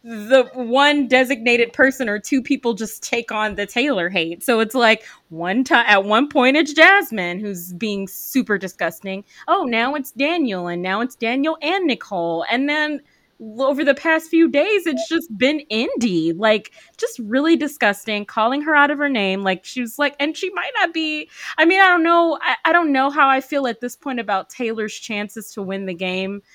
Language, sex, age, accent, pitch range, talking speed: English, female, 20-39, American, 210-300 Hz, 200 wpm